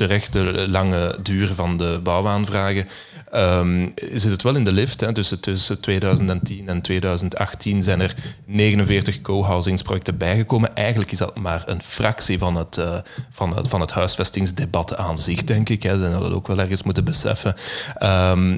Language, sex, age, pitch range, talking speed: Dutch, male, 30-49, 90-110 Hz, 165 wpm